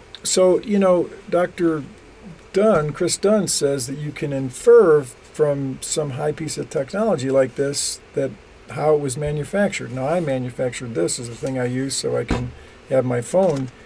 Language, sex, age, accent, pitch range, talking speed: English, male, 50-69, American, 130-165 Hz, 175 wpm